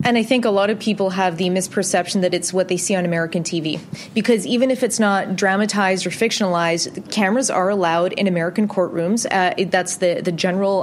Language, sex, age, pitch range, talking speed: English, female, 20-39, 185-235 Hz, 205 wpm